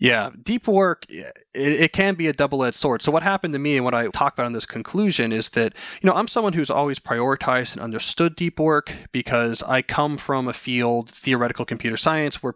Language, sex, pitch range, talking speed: English, male, 120-150 Hz, 215 wpm